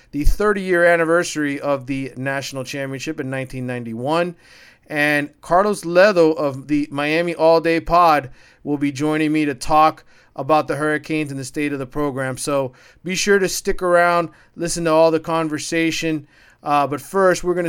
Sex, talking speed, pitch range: male, 165 wpm, 125-155 Hz